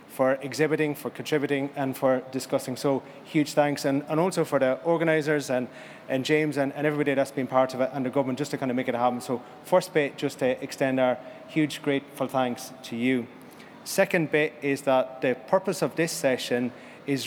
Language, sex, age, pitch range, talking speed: English, male, 30-49, 130-150 Hz, 205 wpm